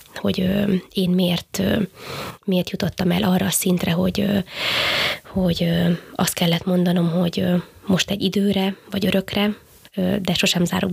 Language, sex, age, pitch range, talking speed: Hungarian, female, 20-39, 180-195 Hz, 160 wpm